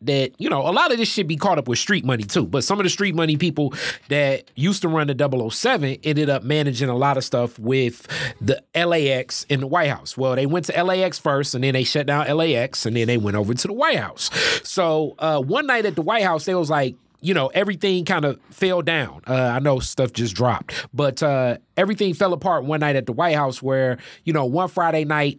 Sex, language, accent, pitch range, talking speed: male, English, American, 135-170 Hz, 245 wpm